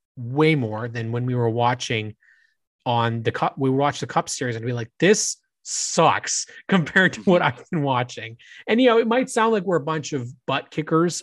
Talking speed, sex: 215 wpm, male